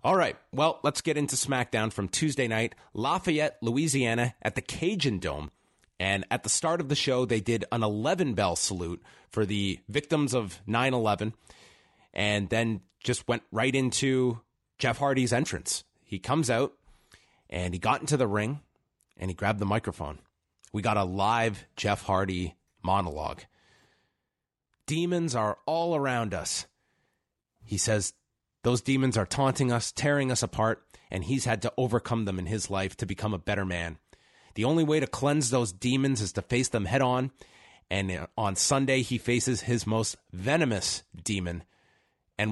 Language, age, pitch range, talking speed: English, 30-49, 100-130 Hz, 160 wpm